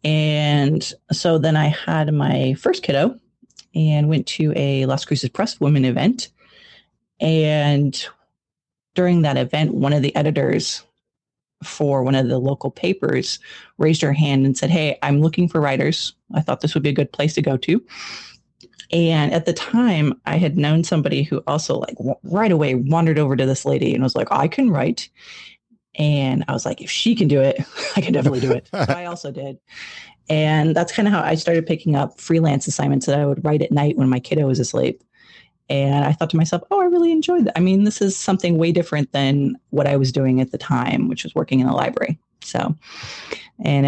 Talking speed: 200 wpm